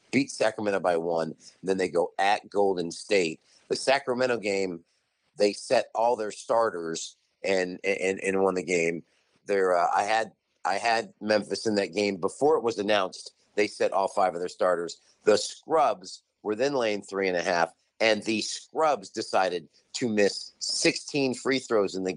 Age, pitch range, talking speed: 50-69, 95-120 Hz, 180 wpm